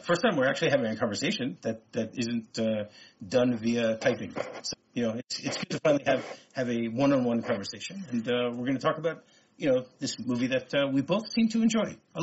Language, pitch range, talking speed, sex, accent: English, 115-165 Hz, 225 wpm, male, American